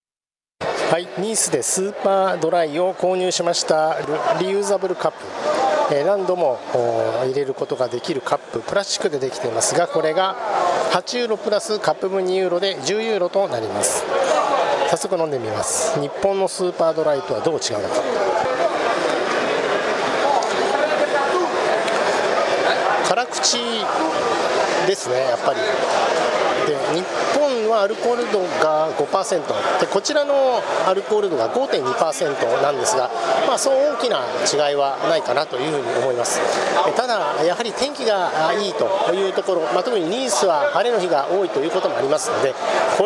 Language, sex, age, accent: Japanese, male, 50-69, native